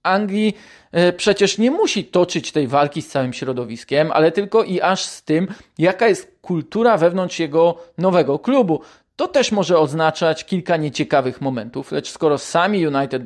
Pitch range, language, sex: 150-200 Hz, Polish, male